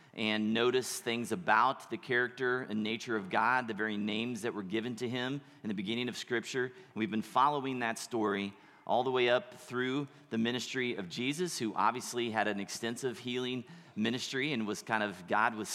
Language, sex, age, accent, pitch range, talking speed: English, male, 30-49, American, 105-125 Hz, 190 wpm